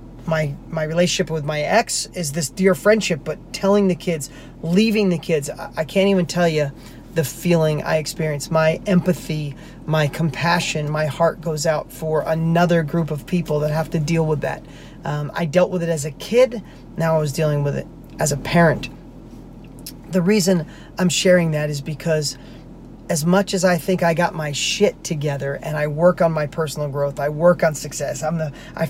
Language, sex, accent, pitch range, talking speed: English, male, American, 155-190 Hz, 195 wpm